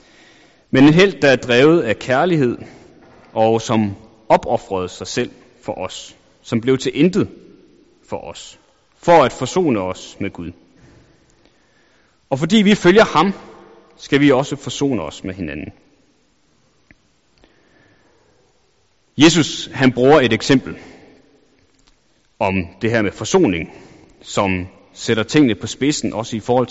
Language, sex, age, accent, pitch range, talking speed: Danish, male, 30-49, native, 105-145 Hz, 130 wpm